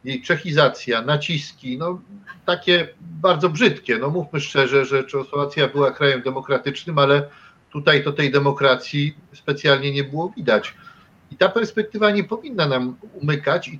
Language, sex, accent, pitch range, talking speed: Polish, male, native, 145-195 Hz, 140 wpm